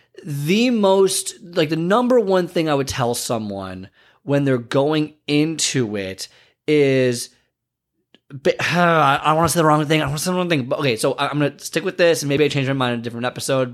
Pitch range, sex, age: 130-170 Hz, male, 20-39